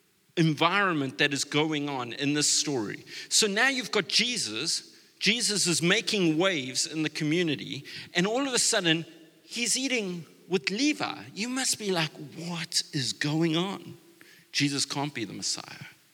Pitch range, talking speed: 130-170 Hz, 155 wpm